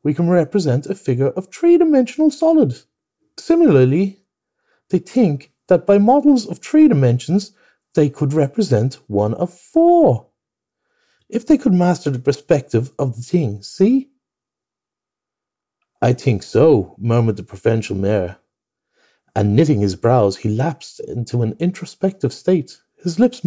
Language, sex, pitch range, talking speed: English, male, 120-195 Hz, 135 wpm